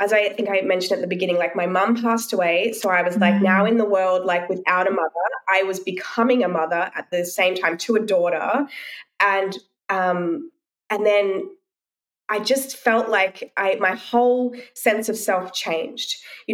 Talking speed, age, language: 185 wpm, 20-39, English